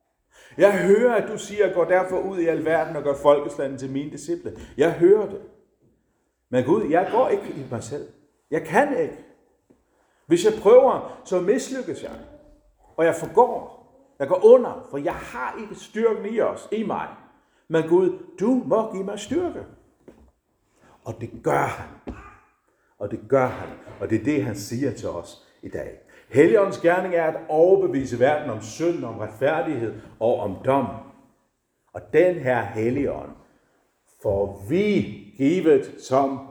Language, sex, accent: Danish, male, native